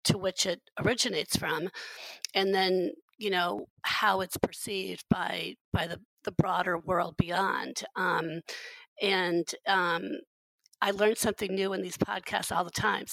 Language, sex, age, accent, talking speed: English, female, 40-59, American, 145 wpm